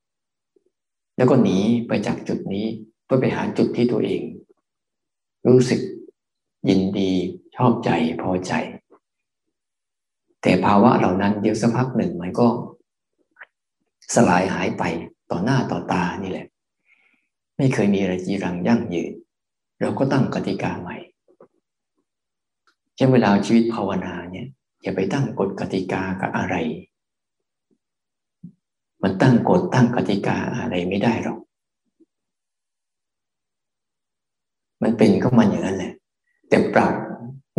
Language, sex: Thai, male